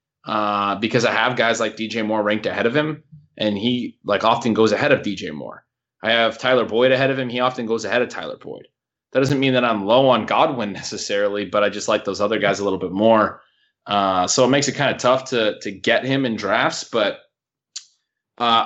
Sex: male